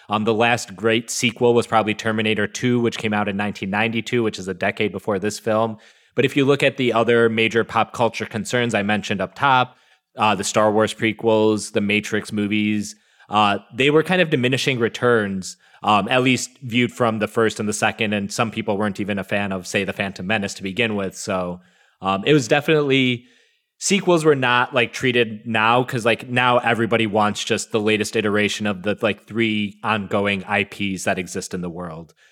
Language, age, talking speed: English, 20-39, 200 wpm